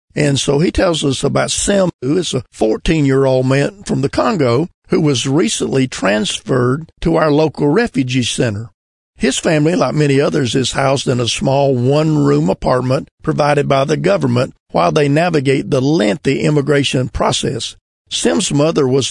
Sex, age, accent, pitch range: male, 50-69, American, 125-150 Hz